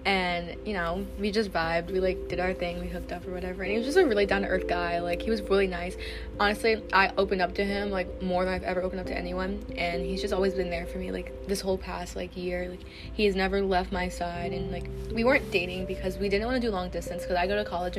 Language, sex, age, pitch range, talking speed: English, female, 20-39, 180-225 Hz, 275 wpm